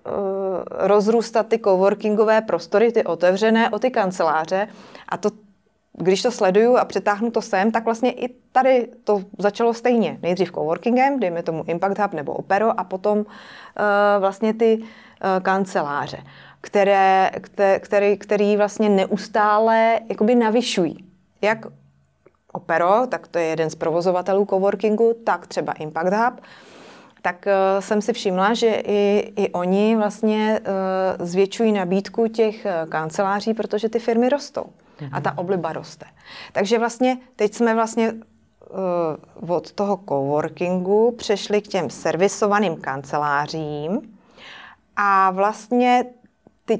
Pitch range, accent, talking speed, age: 190-225 Hz, native, 125 wpm, 30-49